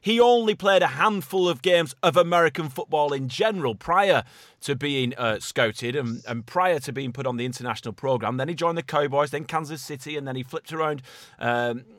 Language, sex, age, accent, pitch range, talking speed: English, male, 30-49, British, 125-165 Hz, 205 wpm